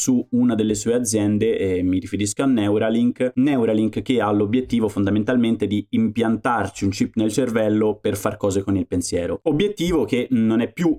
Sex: male